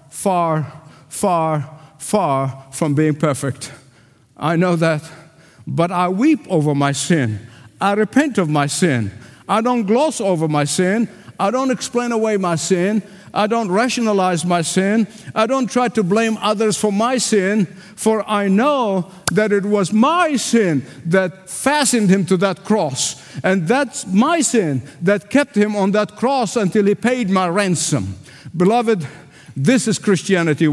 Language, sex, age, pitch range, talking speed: English, male, 50-69, 135-205 Hz, 155 wpm